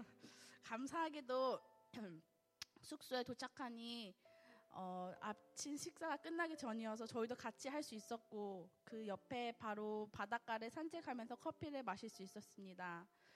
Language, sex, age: Korean, female, 20-39